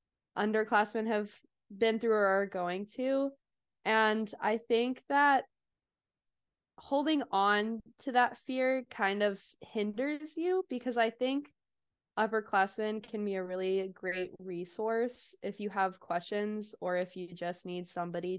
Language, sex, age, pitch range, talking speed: English, female, 20-39, 185-240 Hz, 135 wpm